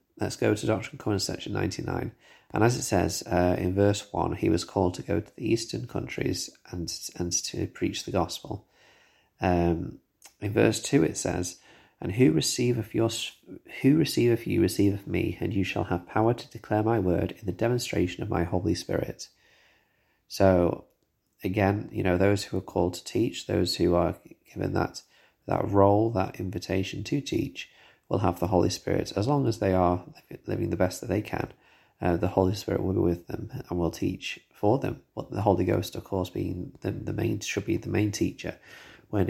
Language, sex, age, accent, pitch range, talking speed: English, male, 30-49, British, 90-105 Hz, 200 wpm